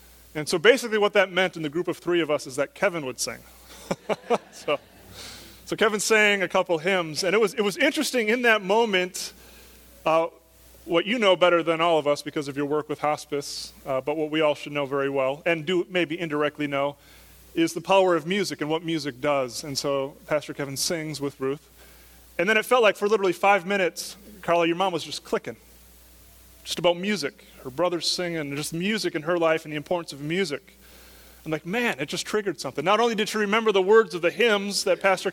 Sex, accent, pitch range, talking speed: male, American, 150-190 Hz, 220 wpm